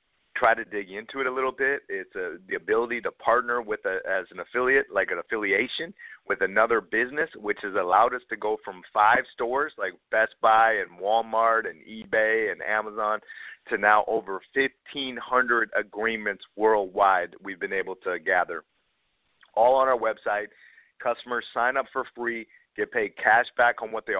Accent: American